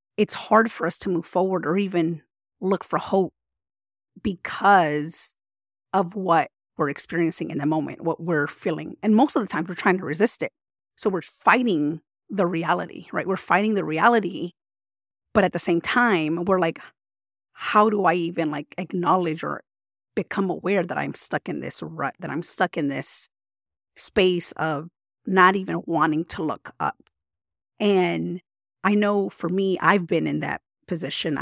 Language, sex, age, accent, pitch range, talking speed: English, female, 30-49, American, 155-195 Hz, 170 wpm